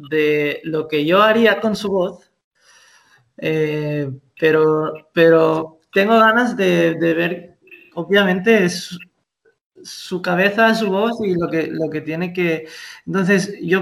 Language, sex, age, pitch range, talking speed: Spanish, male, 20-39, 160-195 Hz, 135 wpm